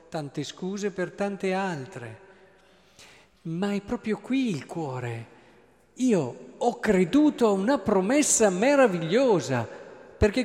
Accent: native